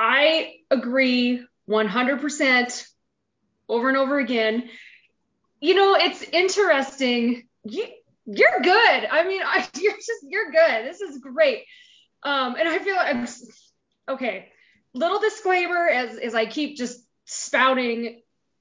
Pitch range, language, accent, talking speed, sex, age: 230-320 Hz, English, American, 125 wpm, female, 20-39